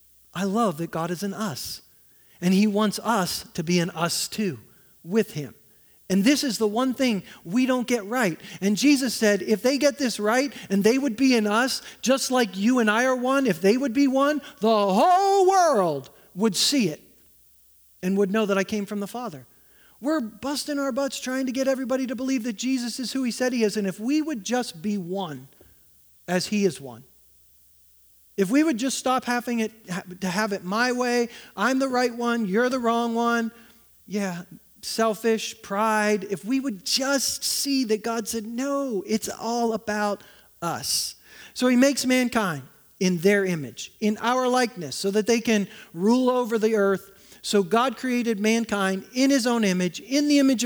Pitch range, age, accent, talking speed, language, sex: 195-255 Hz, 40-59, American, 195 wpm, English, male